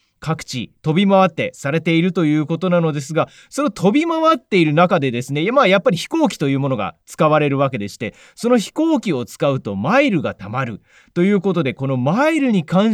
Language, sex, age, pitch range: Japanese, male, 30-49, 145-220 Hz